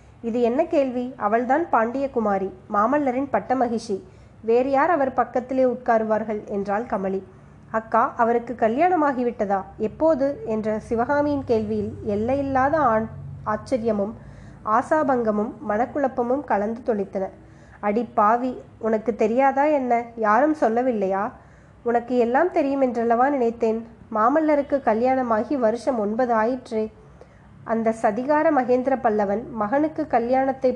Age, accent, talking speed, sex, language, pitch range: 20-39, native, 105 wpm, female, Tamil, 215-265 Hz